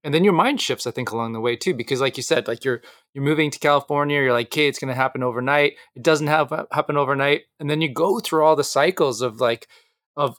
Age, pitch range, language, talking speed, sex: 20-39, 125-155 Hz, English, 260 wpm, male